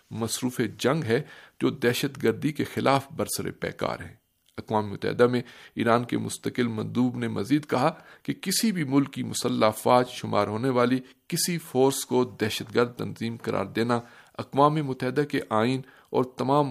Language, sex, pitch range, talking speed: Urdu, male, 110-135 Hz, 160 wpm